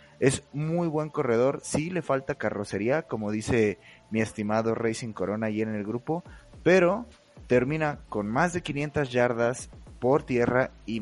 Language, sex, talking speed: Spanish, male, 150 wpm